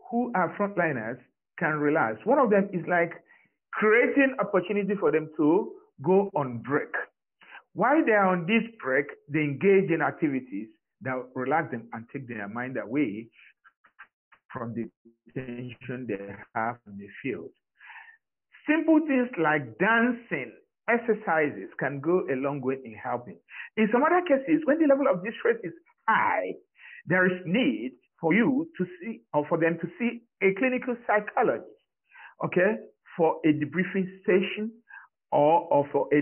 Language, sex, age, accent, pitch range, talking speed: English, male, 50-69, Nigerian, 155-245 Hz, 145 wpm